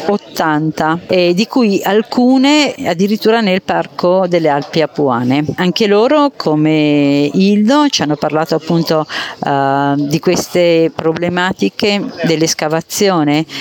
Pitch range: 155-200 Hz